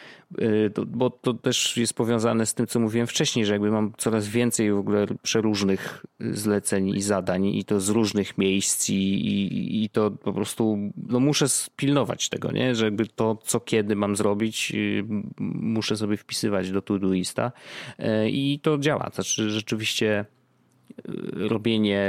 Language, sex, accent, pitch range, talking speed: Polish, male, native, 100-120 Hz, 150 wpm